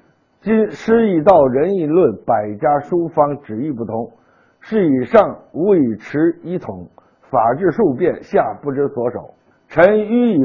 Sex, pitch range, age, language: male, 120-175 Hz, 60-79, Chinese